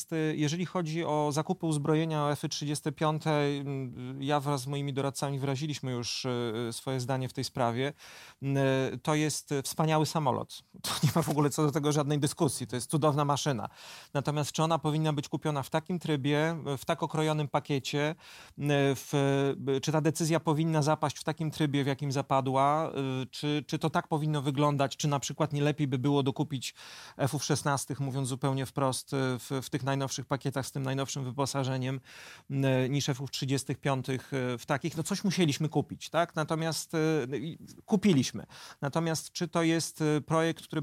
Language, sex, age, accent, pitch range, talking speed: Polish, male, 30-49, native, 140-160 Hz, 155 wpm